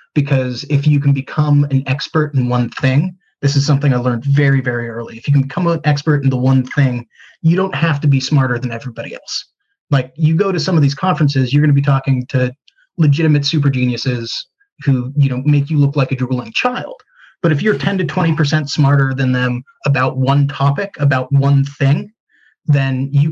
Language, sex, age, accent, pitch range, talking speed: English, male, 30-49, American, 130-150 Hz, 210 wpm